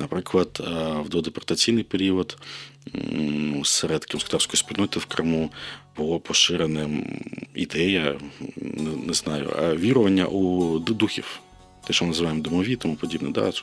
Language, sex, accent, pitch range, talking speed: Ukrainian, male, native, 80-105 Hz, 110 wpm